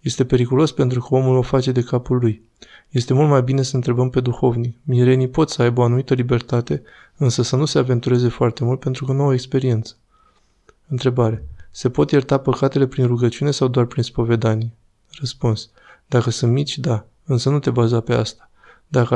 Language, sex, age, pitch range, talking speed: Romanian, male, 20-39, 120-135 Hz, 190 wpm